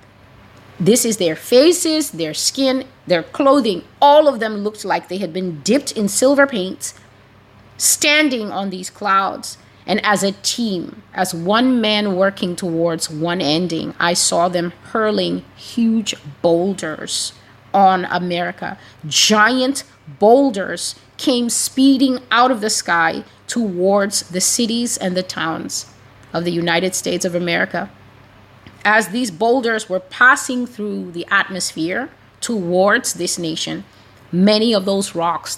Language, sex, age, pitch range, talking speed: English, female, 30-49, 165-220 Hz, 130 wpm